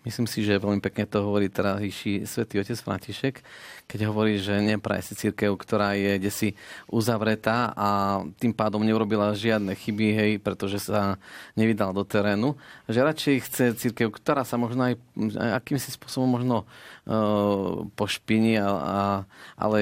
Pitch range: 100-110 Hz